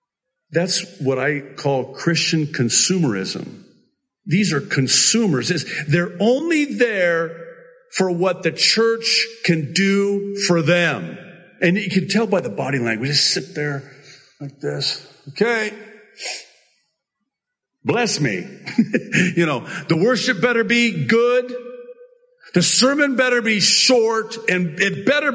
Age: 50-69